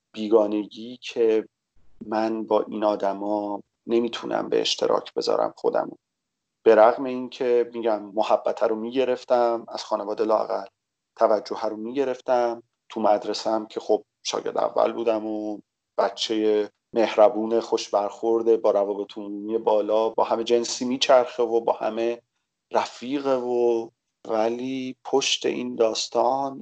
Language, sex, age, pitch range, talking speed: Persian, male, 40-59, 110-145 Hz, 115 wpm